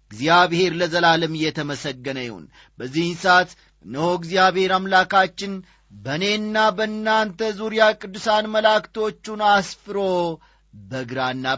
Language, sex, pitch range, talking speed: Amharic, male, 150-220 Hz, 80 wpm